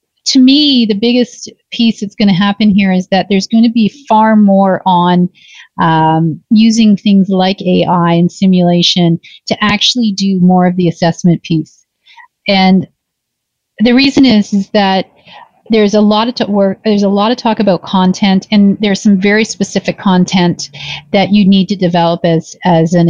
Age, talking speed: 40-59, 170 wpm